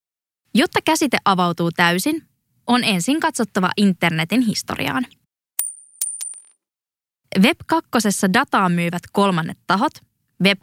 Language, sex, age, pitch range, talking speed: English, female, 20-39, 180-260 Hz, 90 wpm